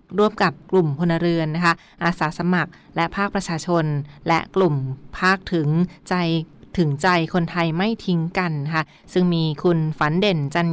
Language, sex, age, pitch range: Thai, female, 20-39, 160-185 Hz